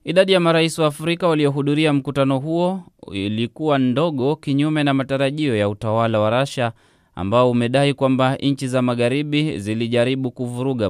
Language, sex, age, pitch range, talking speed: Swahili, male, 20-39, 110-140 Hz, 140 wpm